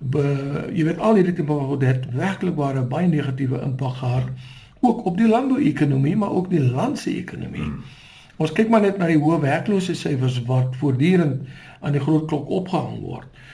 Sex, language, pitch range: male, Swedish, 130-170 Hz